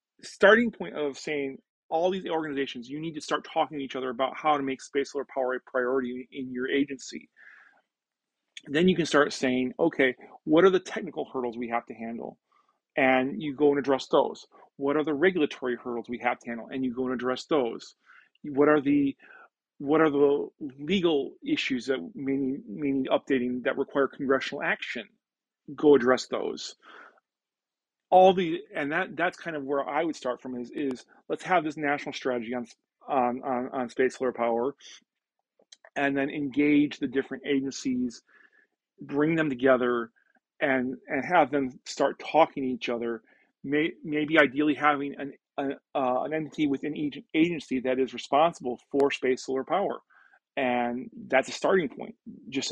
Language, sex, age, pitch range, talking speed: English, male, 40-59, 130-155 Hz, 170 wpm